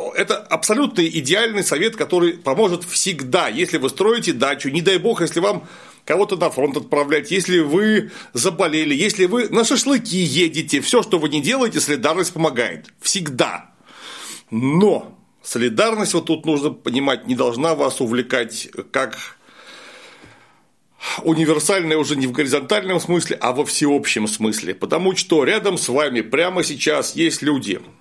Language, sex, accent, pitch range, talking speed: Russian, male, native, 145-190 Hz, 140 wpm